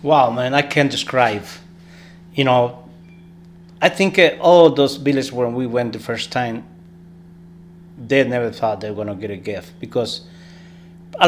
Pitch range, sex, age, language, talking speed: 125-170 Hz, male, 30-49, English, 155 wpm